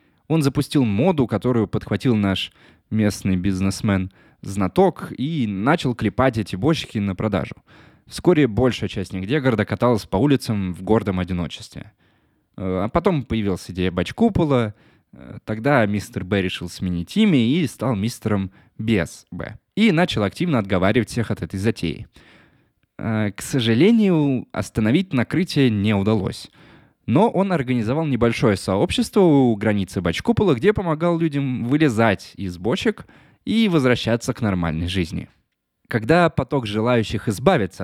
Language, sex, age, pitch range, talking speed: Russian, male, 20-39, 100-145 Hz, 125 wpm